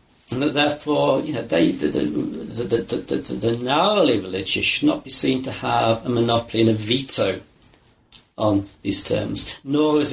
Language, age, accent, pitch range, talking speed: English, 50-69, British, 110-145 Hz, 185 wpm